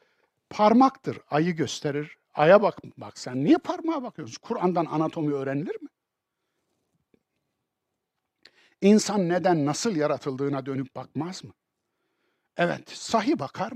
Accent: native